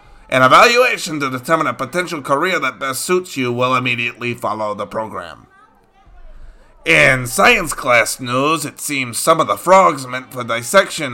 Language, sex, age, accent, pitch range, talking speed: English, male, 30-49, American, 120-150 Hz, 155 wpm